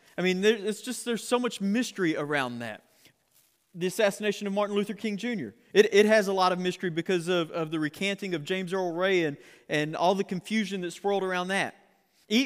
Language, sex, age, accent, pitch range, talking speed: English, male, 30-49, American, 165-210 Hz, 210 wpm